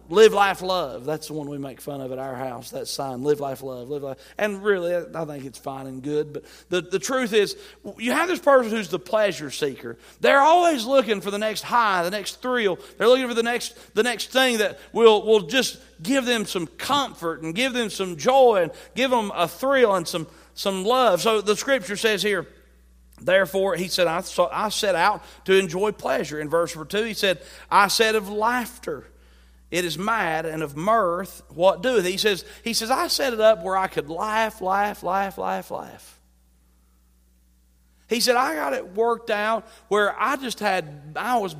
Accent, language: American, English